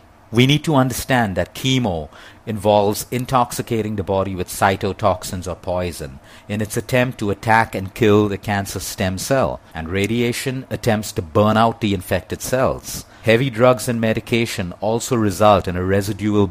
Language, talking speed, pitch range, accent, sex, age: English, 155 wpm, 95-115 Hz, Indian, male, 50-69